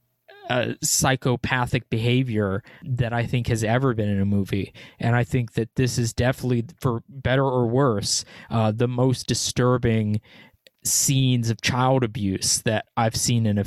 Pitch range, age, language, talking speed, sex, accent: 120-145 Hz, 20-39, English, 155 wpm, male, American